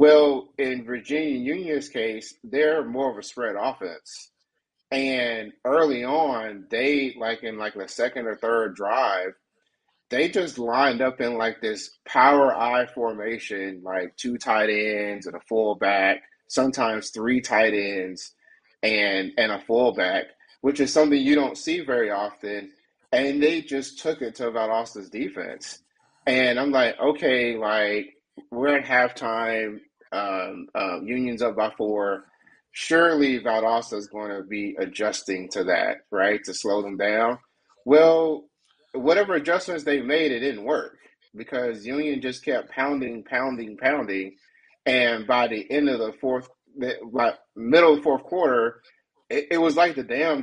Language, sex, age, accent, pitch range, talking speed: English, male, 30-49, American, 105-140 Hz, 145 wpm